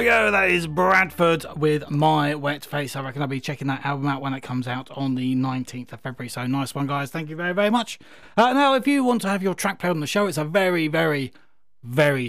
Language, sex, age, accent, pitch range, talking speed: English, male, 30-49, British, 135-175 Hz, 255 wpm